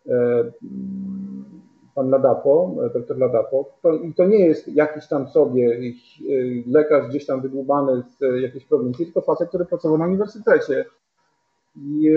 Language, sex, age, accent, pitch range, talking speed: Polish, male, 40-59, native, 145-195 Hz, 135 wpm